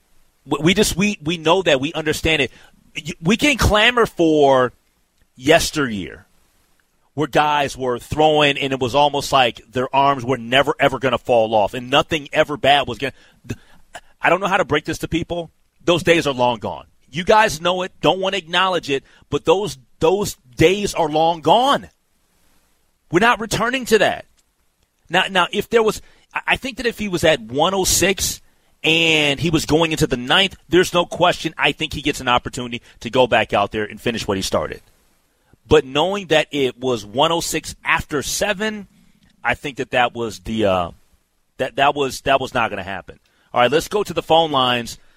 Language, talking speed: English, 195 wpm